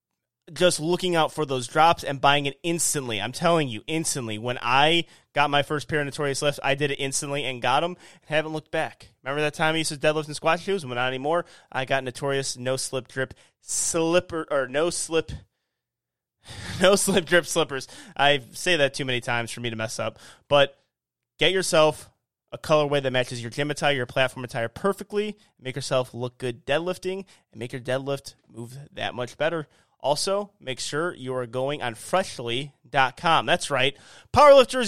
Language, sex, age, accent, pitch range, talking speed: English, male, 20-39, American, 130-165 Hz, 190 wpm